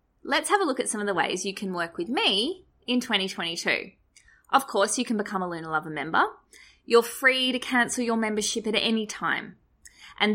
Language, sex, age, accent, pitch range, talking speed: English, female, 20-39, Australian, 185-245 Hz, 205 wpm